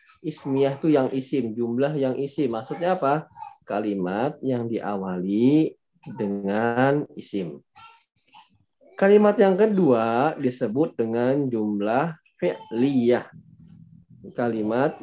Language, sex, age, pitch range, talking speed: Indonesian, male, 20-39, 120-165 Hz, 90 wpm